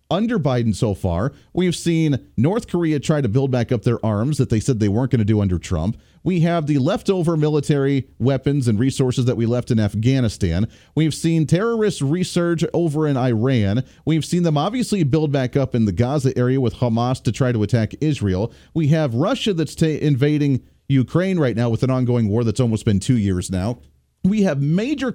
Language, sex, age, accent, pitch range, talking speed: English, male, 40-59, American, 120-165 Hz, 200 wpm